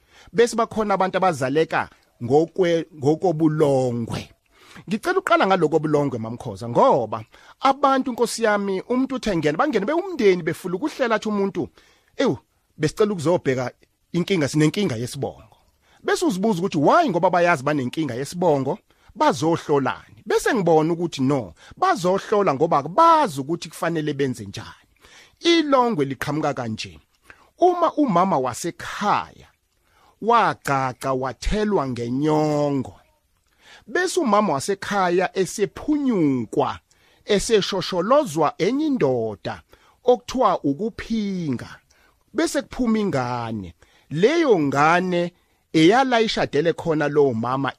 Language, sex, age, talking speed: English, male, 40-59, 90 wpm